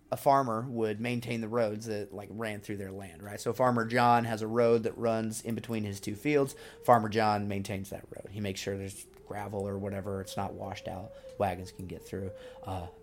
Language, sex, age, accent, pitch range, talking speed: English, male, 30-49, American, 105-130 Hz, 215 wpm